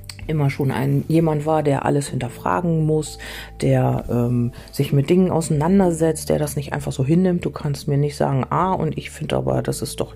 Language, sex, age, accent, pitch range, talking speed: German, female, 40-59, German, 105-165 Hz, 205 wpm